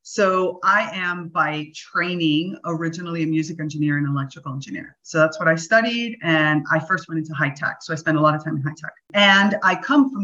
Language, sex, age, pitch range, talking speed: English, female, 30-49, 155-195 Hz, 225 wpm